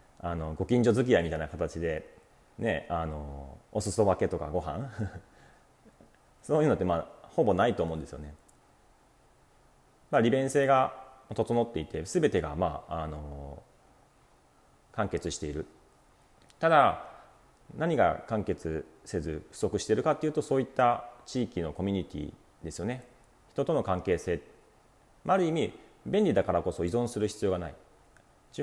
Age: 40-59